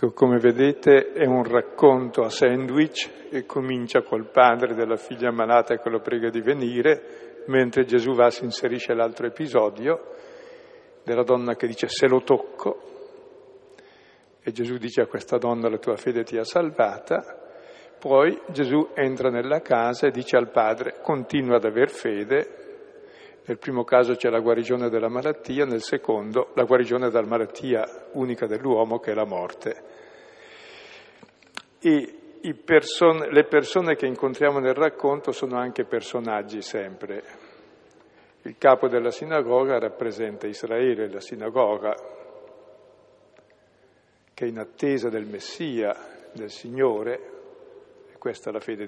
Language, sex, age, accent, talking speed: Italian, male, 50-69, native, 135 wpm